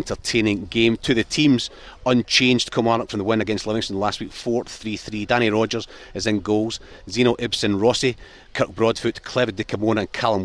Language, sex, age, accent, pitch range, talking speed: English, male, 40-59, British, 105-120 Hz, 180 wpm